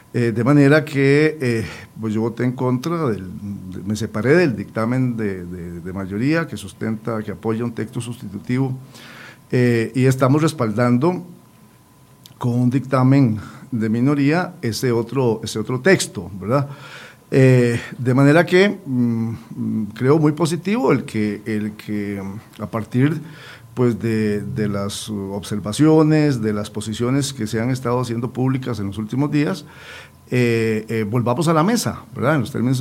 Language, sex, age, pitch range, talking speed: Spanish, male, 50-69, 110-150 Hz, 140 wpm